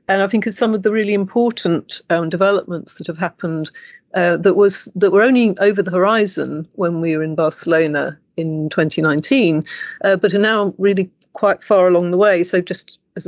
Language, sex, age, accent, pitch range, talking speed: English, female, 50-69, British, 160-195 Hz, 195 wpm